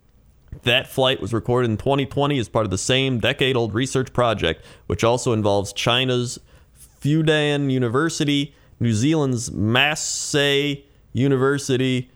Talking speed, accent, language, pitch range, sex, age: 120 wpm, American, English, 105-135 Hz, male, 30-49